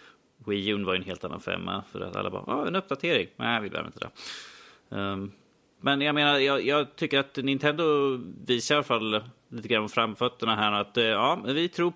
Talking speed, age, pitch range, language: 210 wpm, 30-49, 105-130 Hz, Swedish